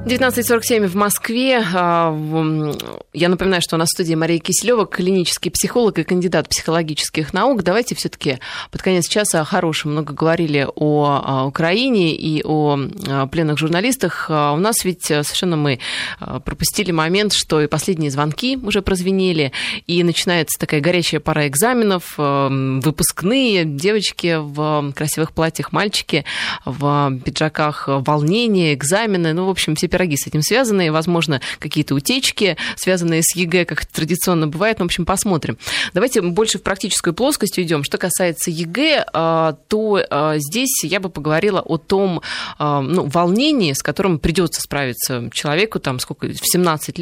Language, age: Russian, 20-39